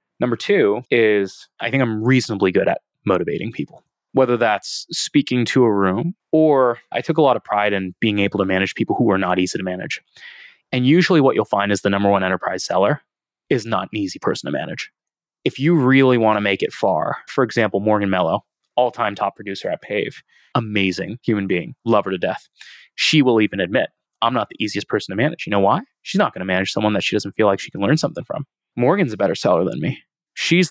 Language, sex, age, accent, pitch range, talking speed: English, male, 20-39, American, 100-130 Hz, 225 wpm